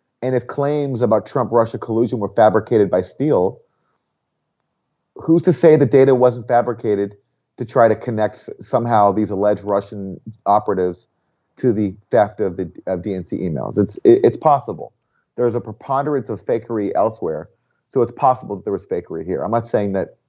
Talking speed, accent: 165 wpm, American